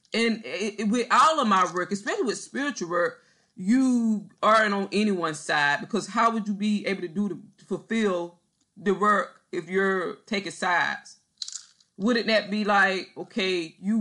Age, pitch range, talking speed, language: 20-39, 180-220 Hz, 160 wpm, English